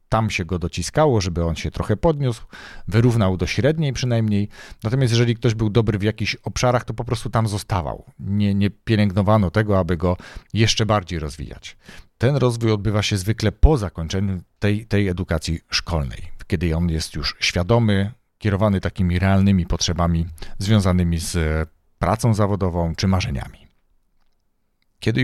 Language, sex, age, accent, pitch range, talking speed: Polish, male, 40-59, native, 85-110 Hz, 145 wpm